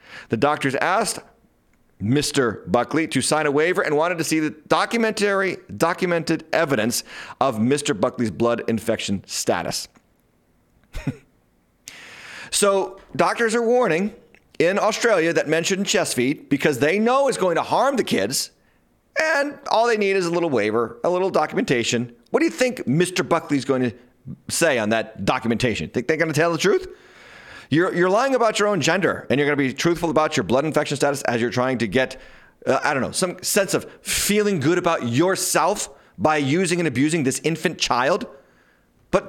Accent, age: American, 40-59